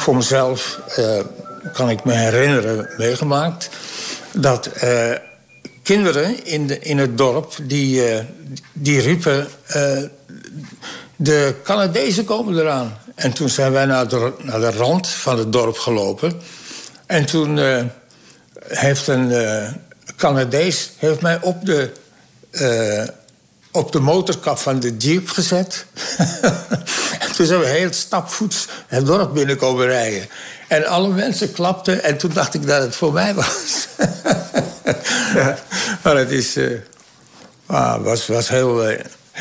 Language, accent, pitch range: Dutch, Dutch, 120-160 Hz